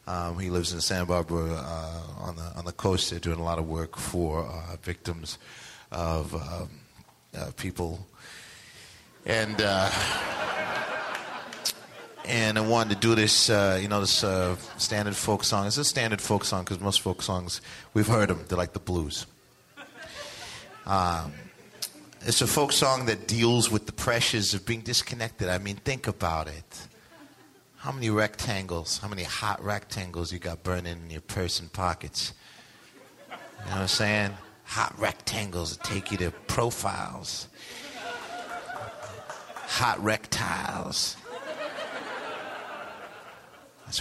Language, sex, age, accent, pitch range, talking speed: English, male, 30-49, American, 90-120 Hz, 140 wpm